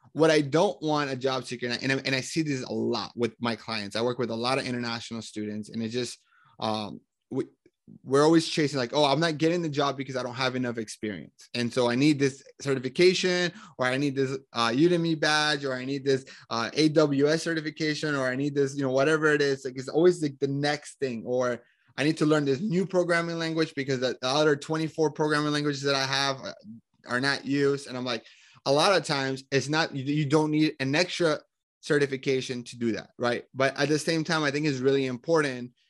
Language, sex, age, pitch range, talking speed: English, male, 20-39, 125-150 Hz, 220 wpm